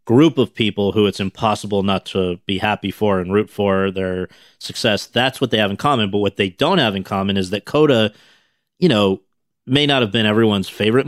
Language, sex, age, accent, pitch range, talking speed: English, male, 40-59, American, 100-115 Hz, 215 wpm